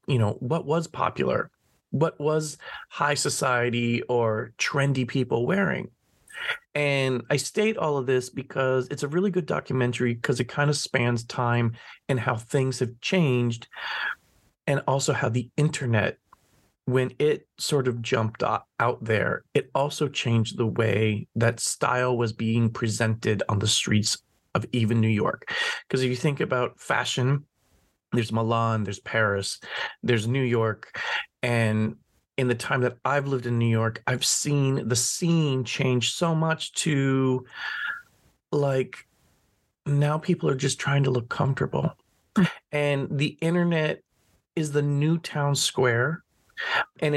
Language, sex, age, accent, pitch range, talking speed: English, male, 30-49, American, 120-145 Hz, 145 wpm